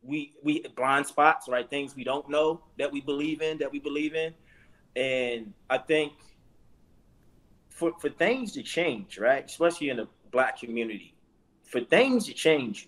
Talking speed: 165 wpm